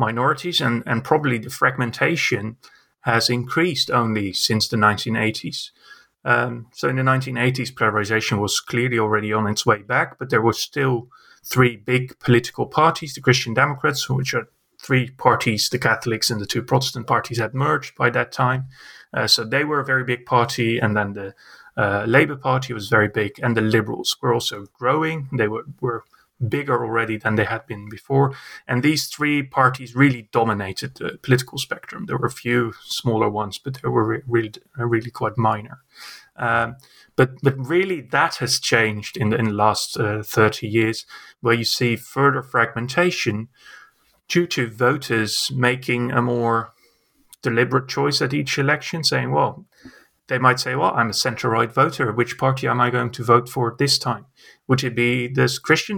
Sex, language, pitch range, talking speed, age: male, English, 115-130 Hz, 175 wpm, 30-49